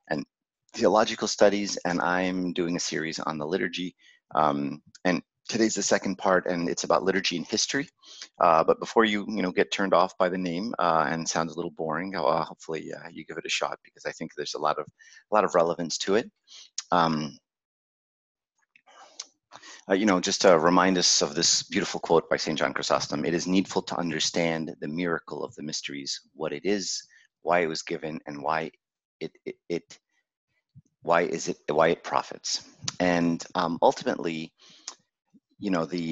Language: English